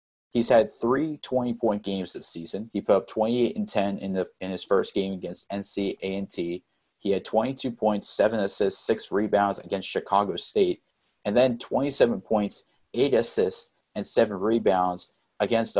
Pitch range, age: 95-115 Hz, 30-49